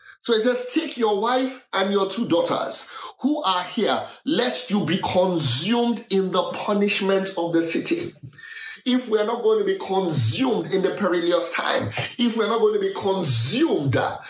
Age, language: 30-49, English